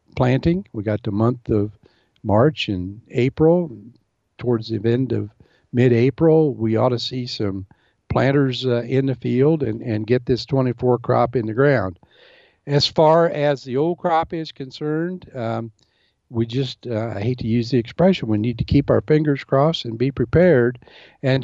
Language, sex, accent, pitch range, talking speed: English, male, American, 115-150 Hz, 175 wpm